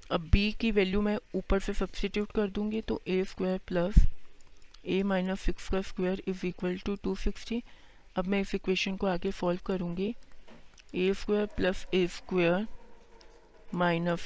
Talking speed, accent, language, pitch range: 155 wpm, native, Hindi, 175-195 Hz